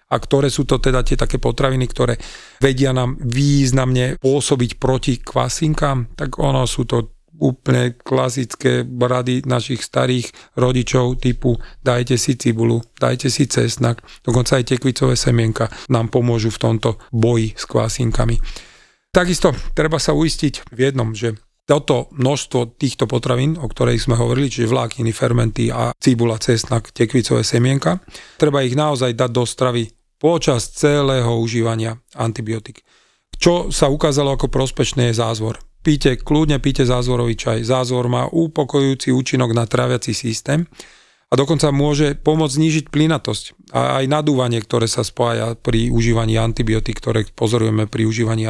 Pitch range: 115-140 Hz